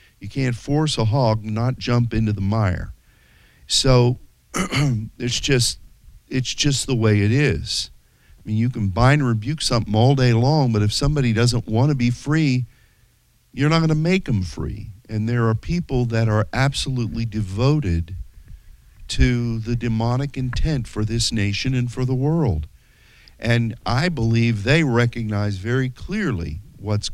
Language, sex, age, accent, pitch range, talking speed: English, male, 50-69, American, 100-130 Hz, 160 wpm